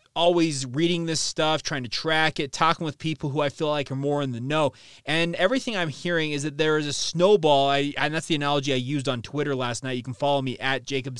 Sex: male